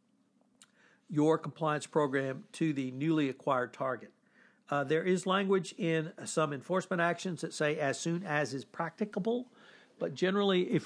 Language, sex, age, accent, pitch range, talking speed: English, male, 60-79, American, 140-175 Hz, 145 wpm